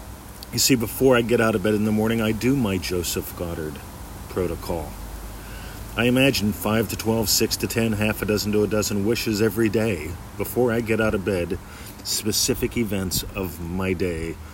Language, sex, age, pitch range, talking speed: English, male, 40-59, 85-105 Hz, 185 wpm